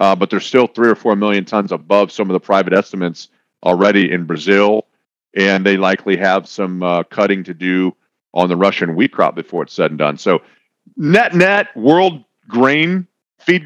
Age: 40-59